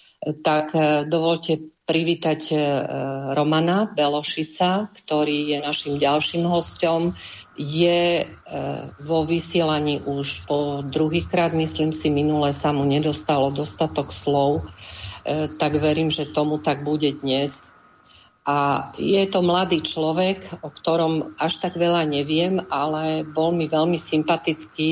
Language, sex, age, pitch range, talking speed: Slovak, female, 50-69, 140-160 Hz, 115 wpm